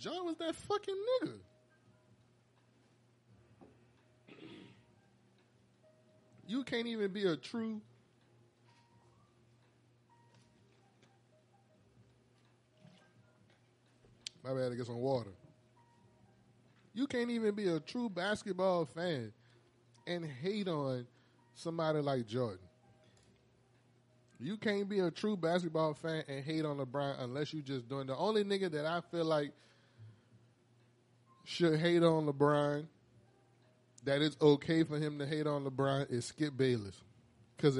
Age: 20-39